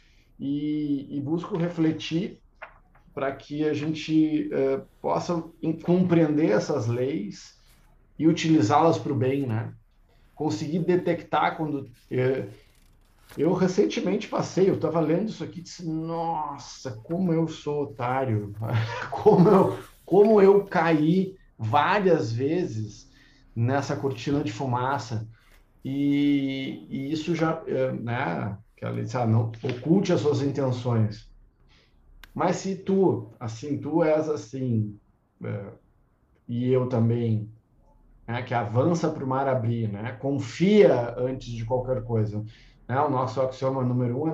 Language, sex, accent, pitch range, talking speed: Portuguese, male, Brazilian, 120-155 Hz, 130 wpm